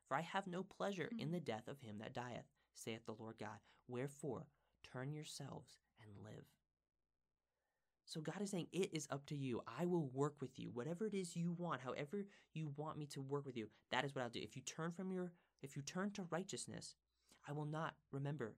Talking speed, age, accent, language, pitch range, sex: 215 wpm, 30-49, American, English, 120-165 Hz, male